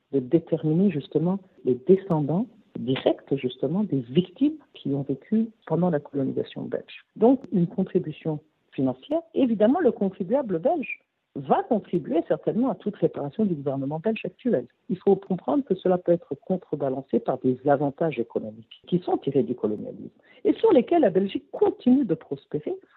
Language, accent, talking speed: French, French, 155 wpm